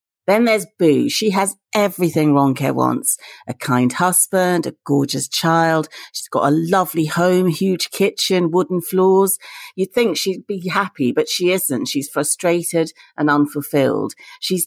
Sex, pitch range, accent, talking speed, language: female, 140-185 Hz, British, 145 wpm, English